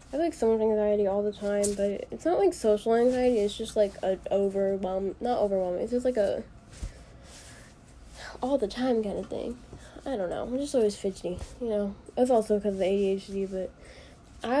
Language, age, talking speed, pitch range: English, 10-29, 190 wpm, 195-240 Hz